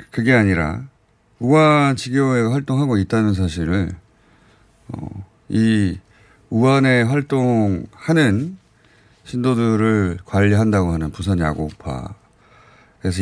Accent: native